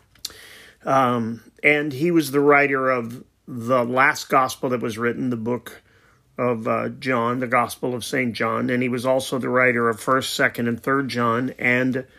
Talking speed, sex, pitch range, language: 175 wpm, male, 120-140 Hz, English